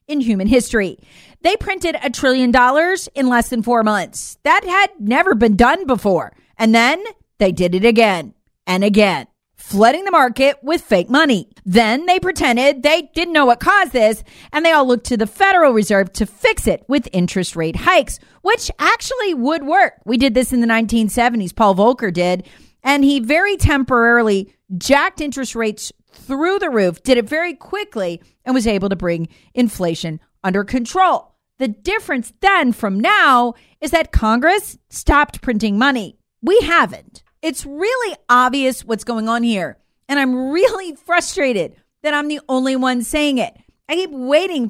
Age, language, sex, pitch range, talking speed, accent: 40-59, English, female, 225-320 Hz, 170 wpm, American